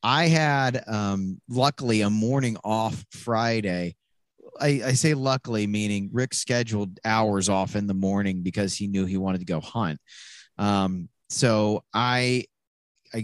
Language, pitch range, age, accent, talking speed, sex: English, 105-125 Hz, 30-49, American, 145 wpm, male